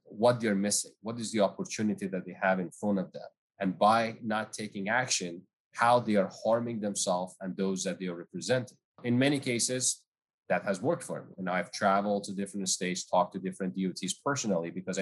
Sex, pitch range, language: male, 95-110 Hz, English